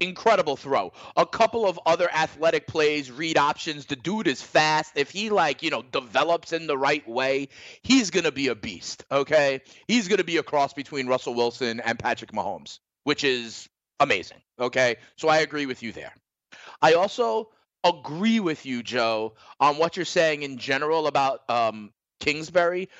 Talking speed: 175 wpm